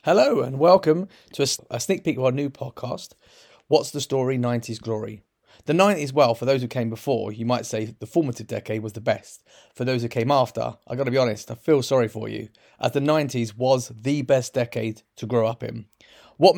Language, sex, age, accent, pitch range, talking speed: English, male, 30-49, British, 120-150 Hz, 215 wpm